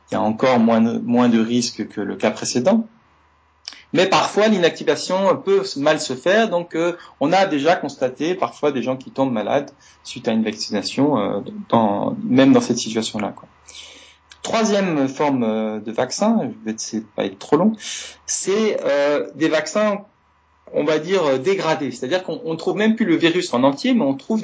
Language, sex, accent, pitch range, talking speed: French, male, French, 115-190 Hz, 190 wpm